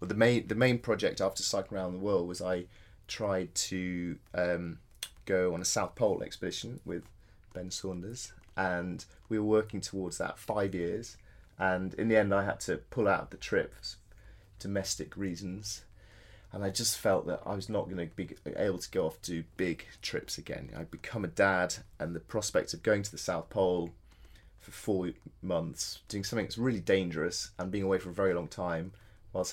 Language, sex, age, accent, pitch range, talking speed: English, male, 30-49, British, 90-105 Hz, 195 wpm